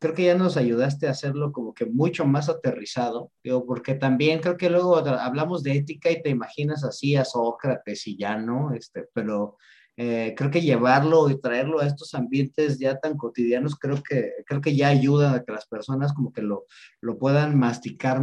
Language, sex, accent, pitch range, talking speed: Spanish, male, Mexican, 130-165 Hz, 190 wpm